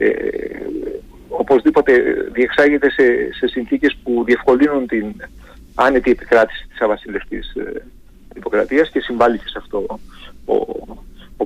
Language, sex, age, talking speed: Greek, male, 40-59, 115 wpm